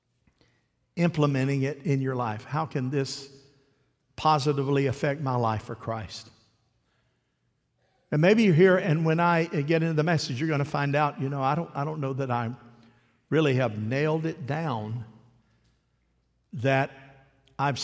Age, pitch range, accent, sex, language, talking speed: 50-69, 125-160 Hz, American, male, English, 155 wpm